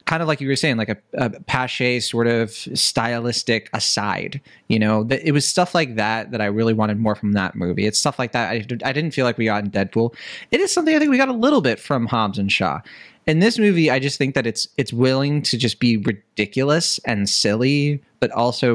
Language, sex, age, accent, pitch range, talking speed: English, male, 20-39, American, 110-145 Hz, 235 wpm